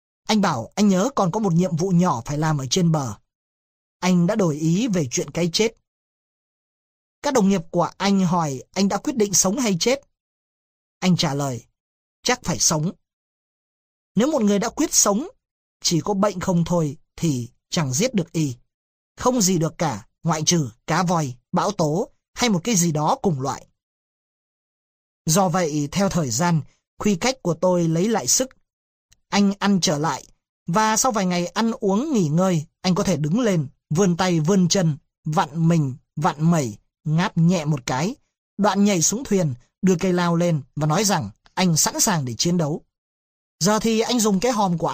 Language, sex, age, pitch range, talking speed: Vietnamese, male, 30-49, 155-200 Hz, 185 wpm